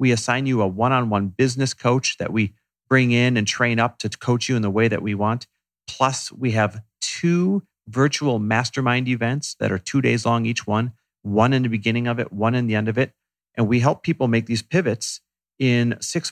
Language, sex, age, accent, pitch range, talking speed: English, male, 40-59, American, 110-135 Hz, 215 wpm